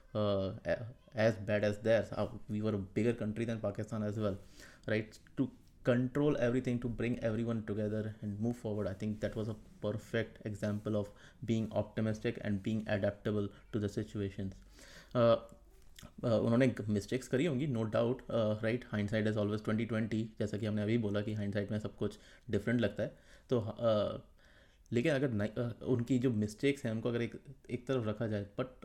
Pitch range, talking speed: 105-120 Hz, 125 wpm